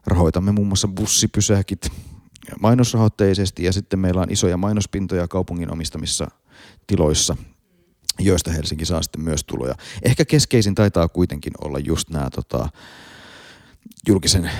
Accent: native